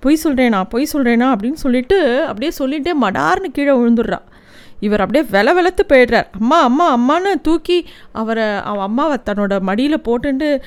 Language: Tamil